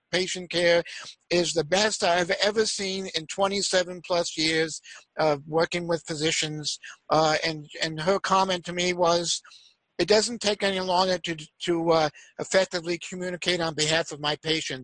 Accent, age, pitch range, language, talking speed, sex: American, 50-69, 165-200 Hz, English, 160 wpm, male